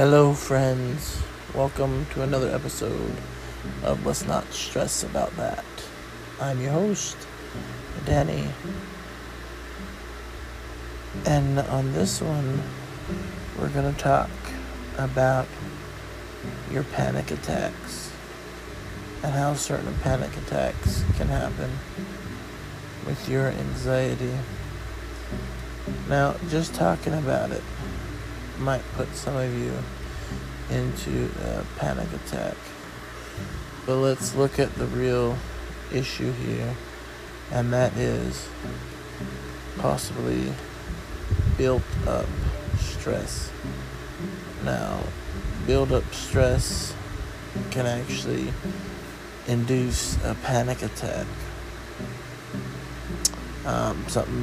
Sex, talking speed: male, 85 wpm